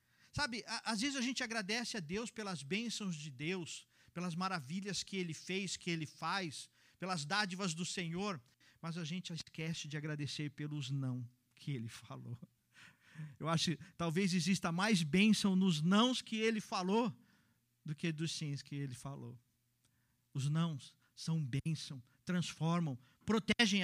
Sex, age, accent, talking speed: male, 50-69, Brazilian, 150 wpm